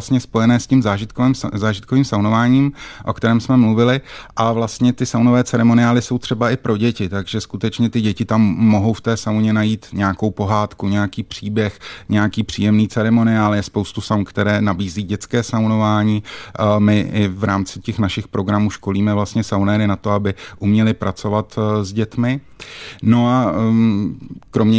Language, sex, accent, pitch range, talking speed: Czech, male, native, 95-110 Hz, 155 wpm